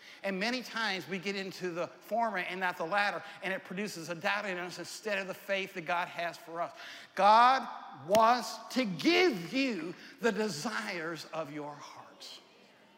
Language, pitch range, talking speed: English, 170-200 Hz, 175 wpm